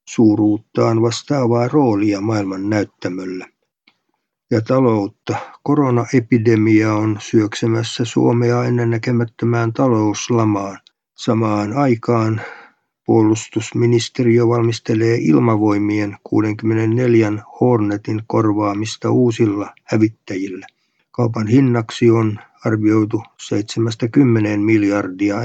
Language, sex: Finnish, male